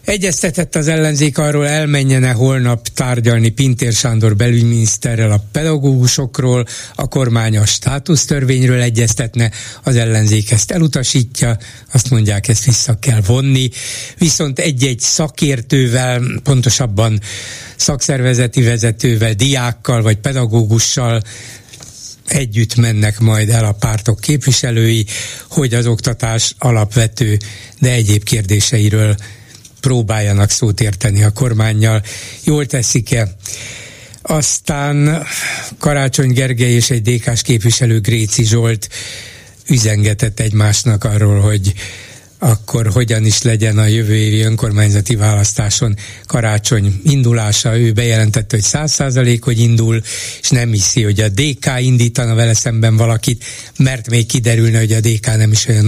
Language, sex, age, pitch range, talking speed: Hungarian, male, 60-79, 110-130 Hz, 115 wpm